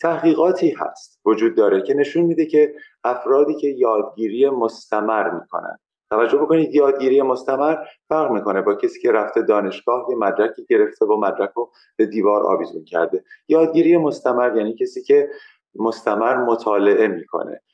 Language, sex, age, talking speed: Persian, male, 30-49, 140 wpm